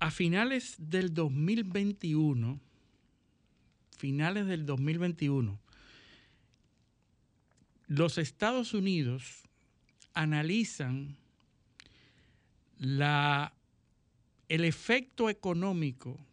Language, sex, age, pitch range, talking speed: Spanish, male, 60-79, 130-180 Hz, 55 wpm